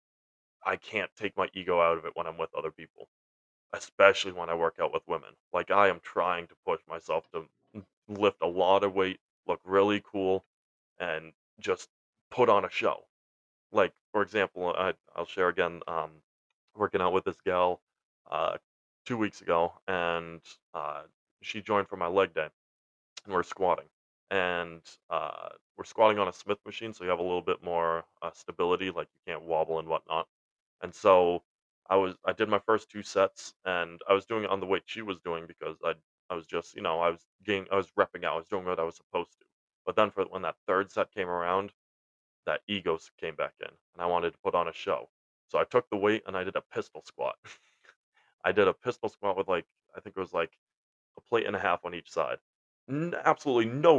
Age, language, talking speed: 20-39, English, 210 wpm